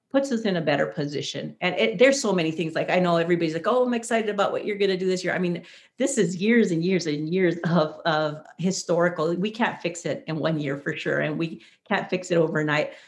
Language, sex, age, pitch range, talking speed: English, female, 40-59, 160-190 Hz, 250 wpm